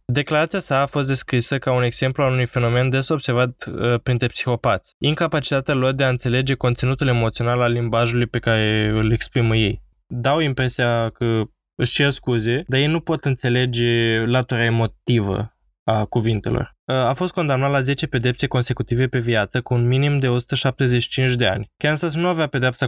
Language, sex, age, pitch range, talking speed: Romanian, male, 20-39, 115-140 Hz, 170 wpm